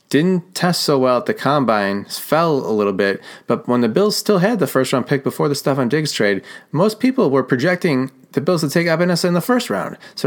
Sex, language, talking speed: male, English, 245 wpm